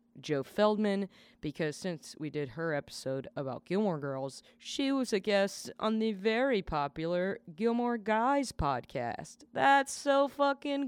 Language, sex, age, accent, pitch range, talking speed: English, female, 20-39, American, 150-215 Hz, 140 wpm